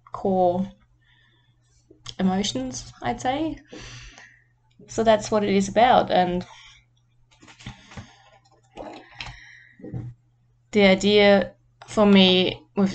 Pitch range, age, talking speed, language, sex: 140-200 Hz, 20-39, 75 wpm, English, female